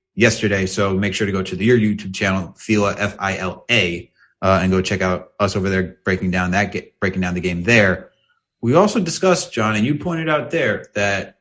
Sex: male